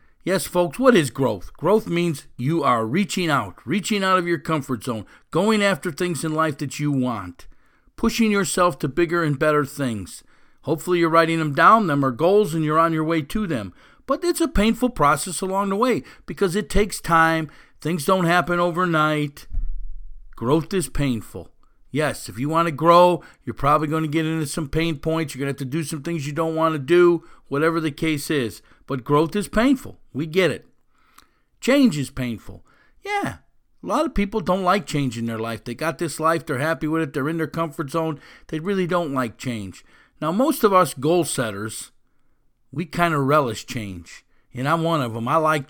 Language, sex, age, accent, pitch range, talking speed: English, male, 50-69, American, 140-175 Hz, 205 wpm